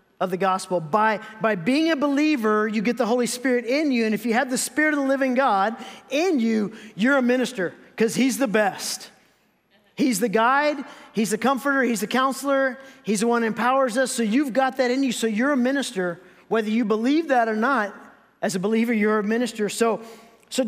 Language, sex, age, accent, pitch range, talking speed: English, male, 40-59, American, 185-245 Hz, 210 wpm